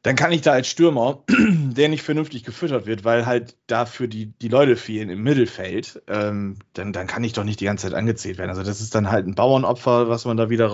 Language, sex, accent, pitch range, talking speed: German, male, German, 105-120 Hz, 240 wpm